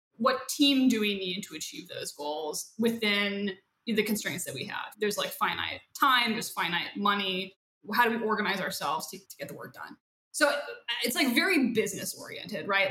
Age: 20-39